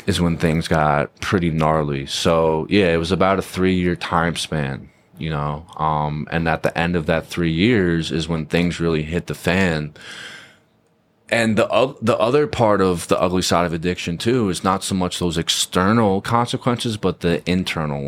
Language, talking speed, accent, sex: English, 185 wpm, American, male